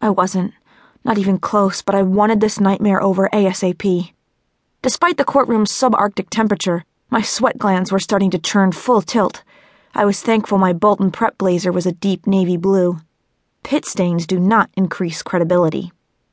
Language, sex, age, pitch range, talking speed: English, female, 30-49, 180-220 Hz, 160 wpm